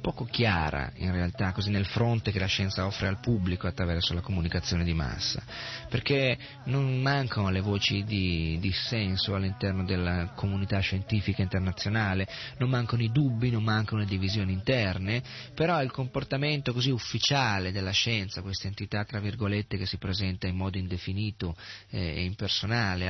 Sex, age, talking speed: male, 30-49, 150 wpm